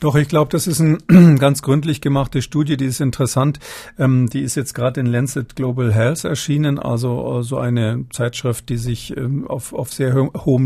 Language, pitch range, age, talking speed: German, 120-140 Hz, 50-69, 190 wpm